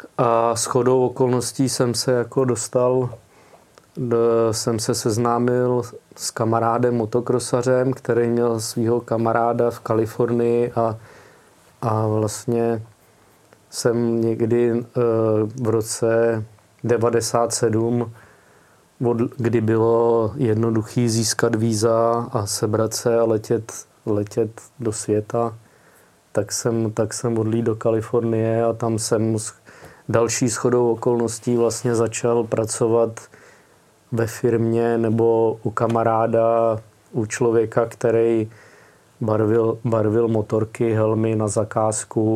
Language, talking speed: Czech, 105 wpm